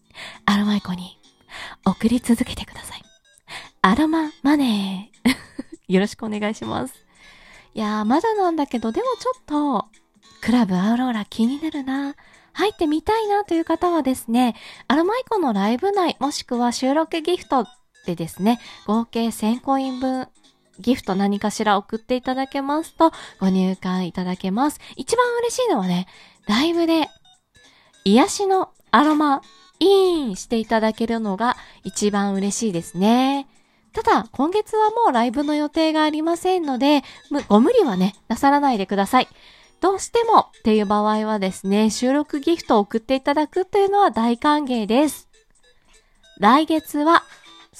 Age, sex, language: 20-39, female, Japanese